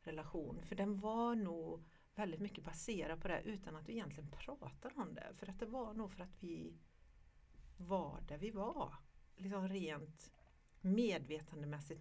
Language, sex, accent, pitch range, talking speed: English, female, Swedish, 160-210 Hz, 165 wpm